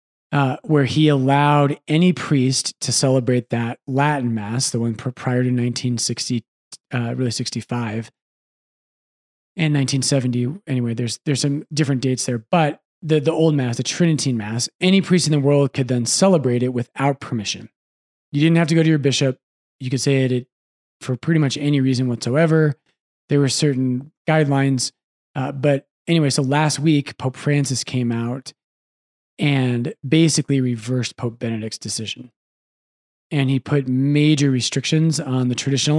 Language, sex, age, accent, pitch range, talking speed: English, male, 30-49, American, 125-150 Hz, 155 wpm